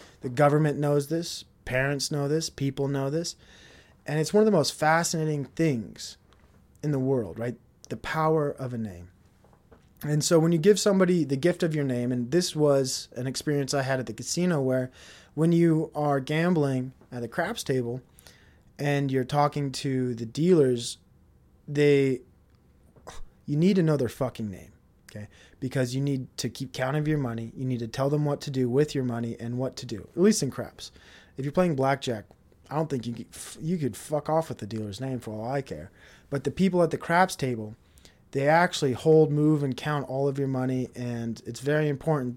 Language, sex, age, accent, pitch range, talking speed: English, male, 20-39, American, 120-150 Hz, 200 wpm